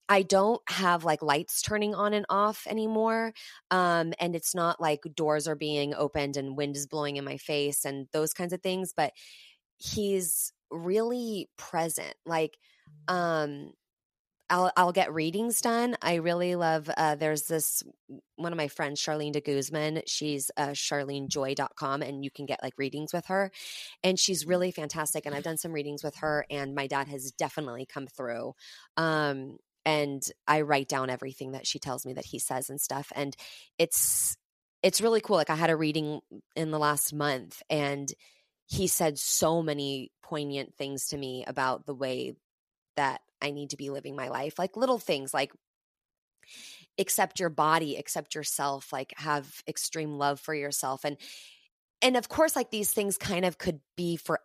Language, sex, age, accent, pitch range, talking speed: English, female, 20-39, American, 140-180 Hz, 175 wpm